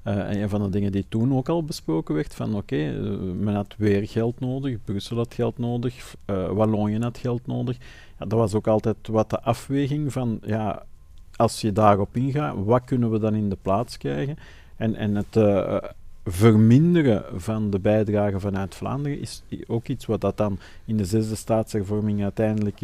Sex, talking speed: male, 180 wpm